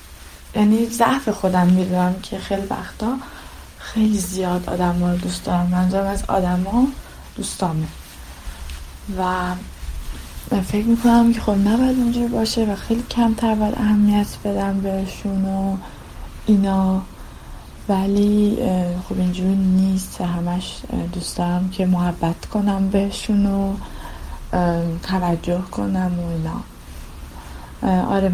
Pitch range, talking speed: 165-210 Hz, 110 wpm